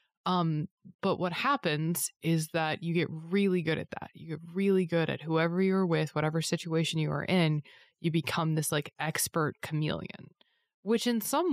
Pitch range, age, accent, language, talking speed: 150-180 Hz, 20-39, American, English, 175 wpm